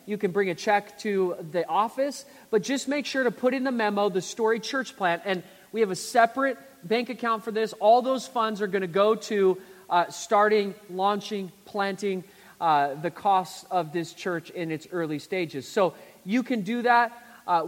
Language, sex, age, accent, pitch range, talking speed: English, male, 30-49, American, 180-215 Hz, 195 wpm